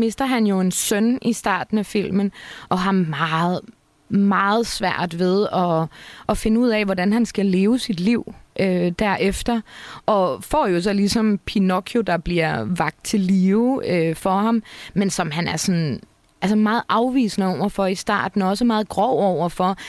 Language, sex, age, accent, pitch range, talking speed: Danish, female, 20-39, native, 185-225 Hz, 175 wpm